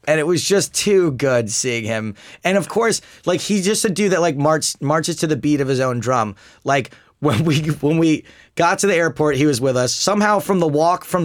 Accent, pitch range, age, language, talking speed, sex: American, 115-165 Hz, 30-49, English, 240 wpm, male